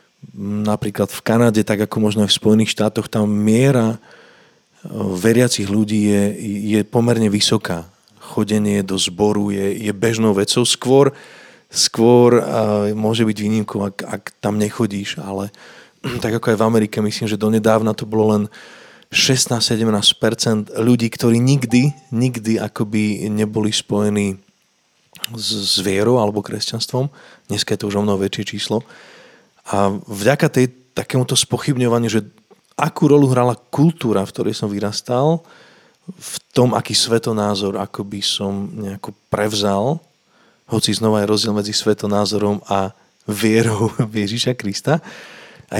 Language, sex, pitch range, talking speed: Czech, male, 105-120 Hz, 135 wpm